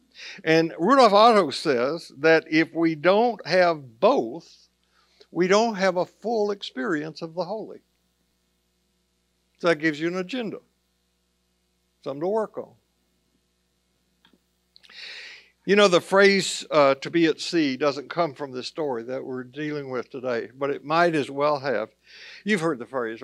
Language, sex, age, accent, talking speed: English, male, 60-79, American, 150 wpm